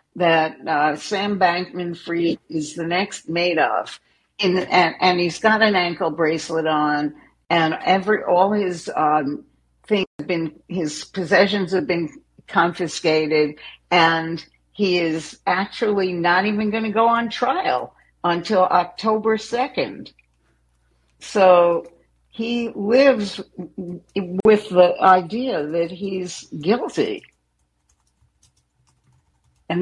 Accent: American